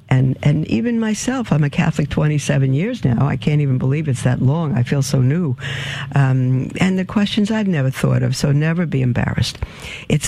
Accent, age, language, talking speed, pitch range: American, 60-79, English, 200 wpm, 130-170 Hz